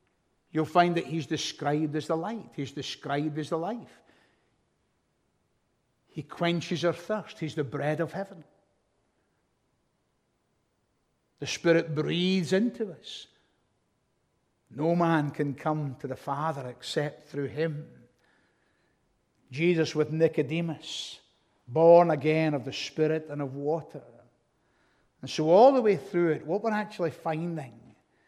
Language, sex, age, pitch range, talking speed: English, male, 60-79, 140-175 Hz, 125 wpm